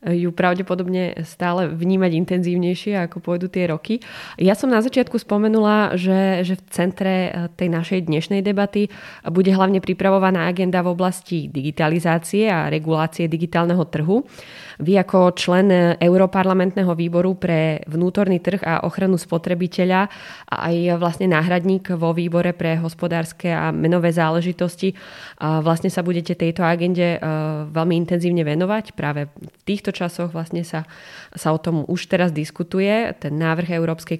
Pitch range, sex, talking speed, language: 160-185 Hz, female, 135 wpm, Slovak